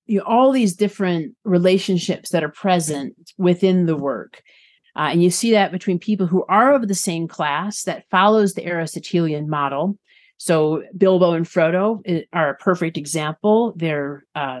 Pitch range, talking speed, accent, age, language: 160-200 Hz, 170 wpm, American, 40-59, English